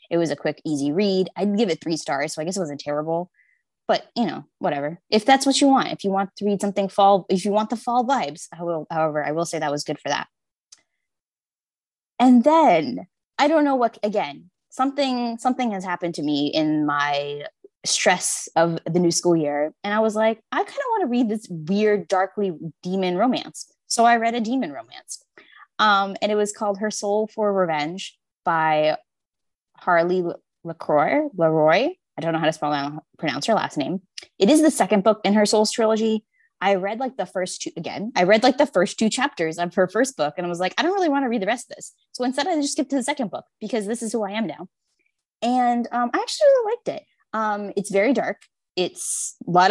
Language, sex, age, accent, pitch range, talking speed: English, female, 10-29, American, 165-240 Hz, 225 wpm